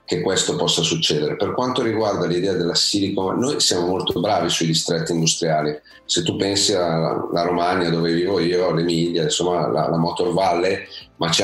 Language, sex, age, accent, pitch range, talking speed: Italian, male, 40-59, native, 80-90 Hz, 170 wpm